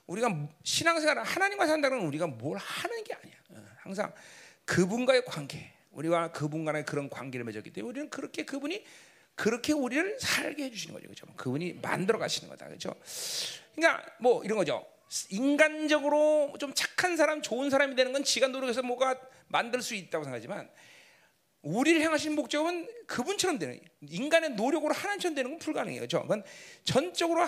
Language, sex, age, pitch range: Korean, male, 40-59, 215-345 Hz